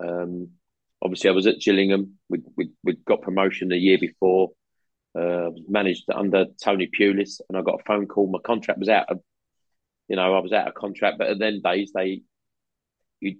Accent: British